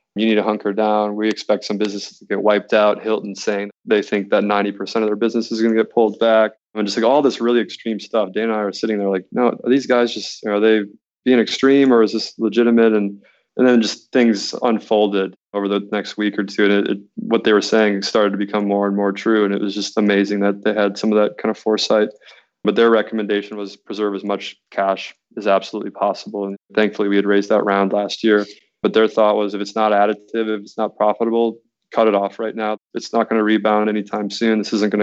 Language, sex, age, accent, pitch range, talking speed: English, male, 20-39, American, 100-110 Hz, 250 wpm